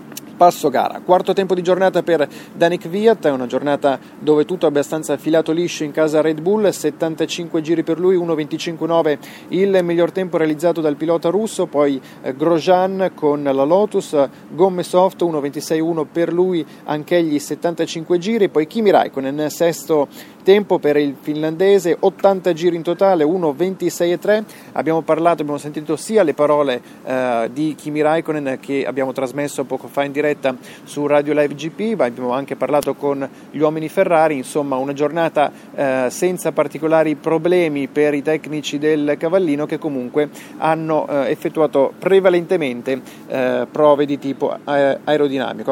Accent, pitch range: native, 145-175 Hz